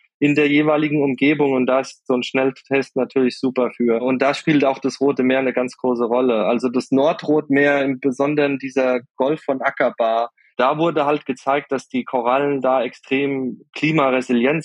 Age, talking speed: 20-39, 175 wpm